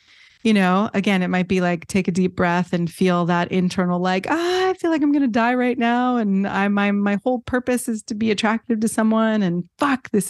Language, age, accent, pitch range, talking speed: English, 30-49, American, 180-215 Hz, 240 wpm